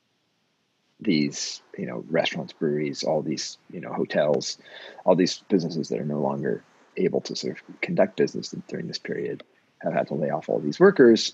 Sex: male